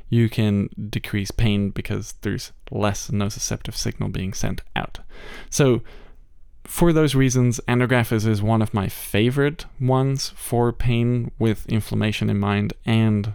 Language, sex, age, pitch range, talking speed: English, male, 20-39, 105-125 Hz, 135 wpm